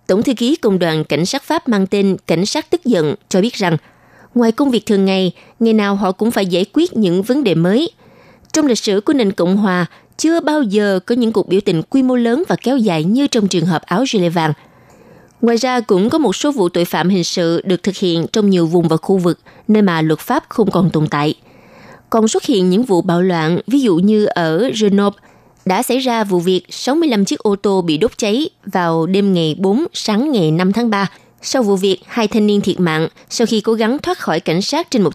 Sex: female